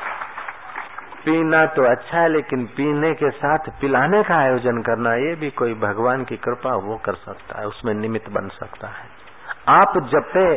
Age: 60-79